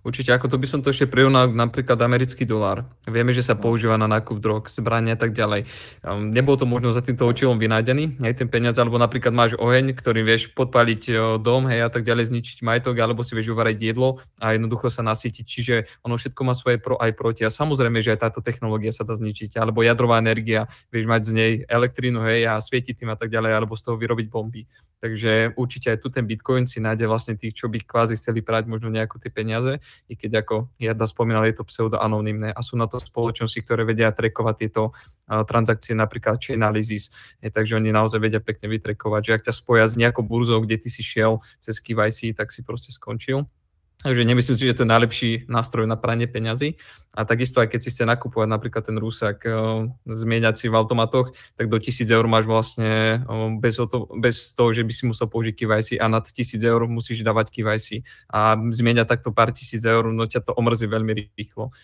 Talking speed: 205 wpm